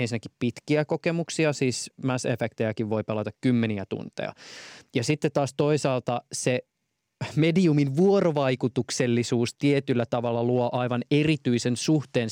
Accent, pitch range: native, 120-150 Hz